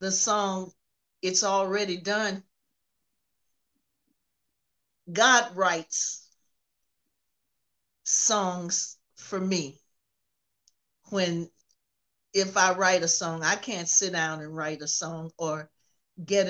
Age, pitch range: 50-69, 155-185 Hz